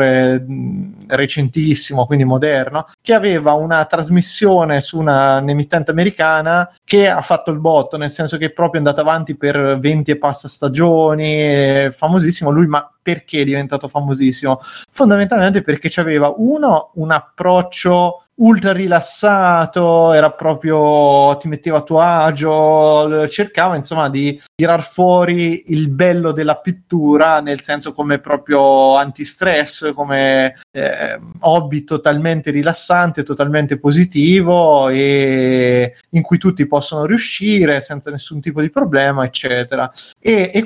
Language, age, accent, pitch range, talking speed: Italian, 30-49, native, 145-170 Hz, 125 wpm